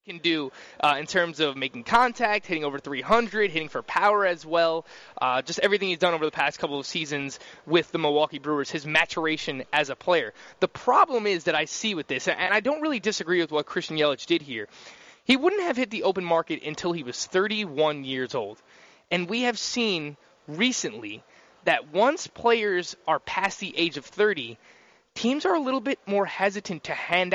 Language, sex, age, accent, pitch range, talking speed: English, male, 20-39, American, 155-210 Hz, 200 wpm